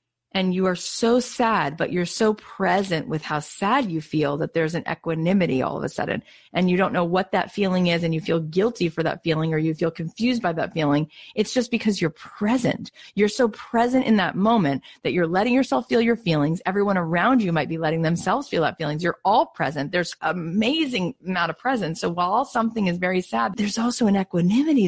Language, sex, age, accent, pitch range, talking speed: English, female, 30-49, American, 155-205 Hz, 220 wpm